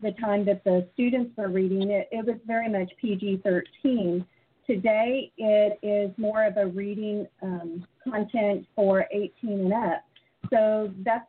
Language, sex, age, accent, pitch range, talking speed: English, female, 40-59, American, 195-220 Hz, 150 wpm